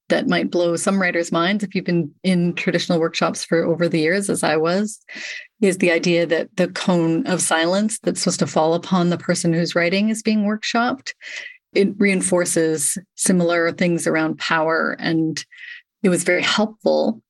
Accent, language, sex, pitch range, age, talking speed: American, English, female, 165-200 Hz, 30-49, 175 wpm